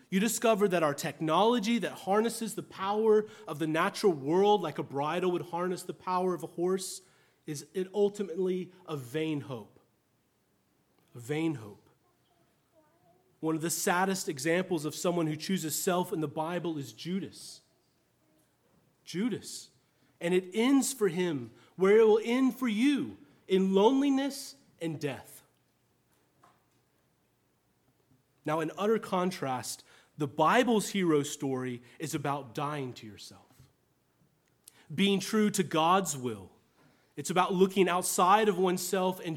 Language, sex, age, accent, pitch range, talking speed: English, male, 30-49, American, 150-195 Hz, 135 wpm